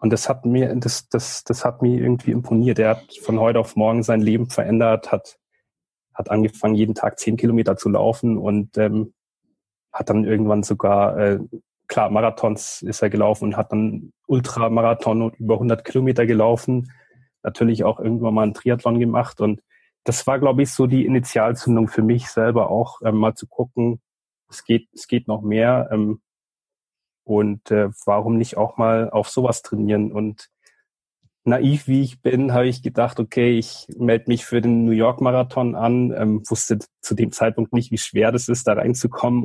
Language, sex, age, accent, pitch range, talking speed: German, male, 30-49, German, 110-120 Hz, 180 wpm